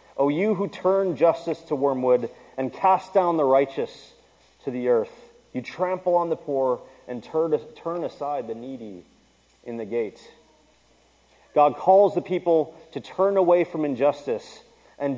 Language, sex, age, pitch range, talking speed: English, male, 30-49, 130-170 Hz, 155 wpm